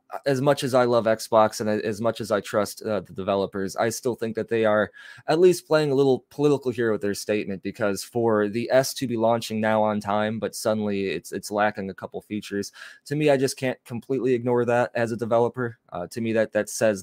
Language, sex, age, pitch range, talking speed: English, male, 20-39, 100-125 Hz, 235 wpm